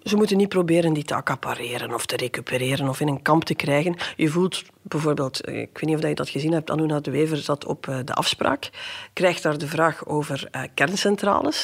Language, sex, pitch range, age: Dutch, female, 155-205 Hz, 40-59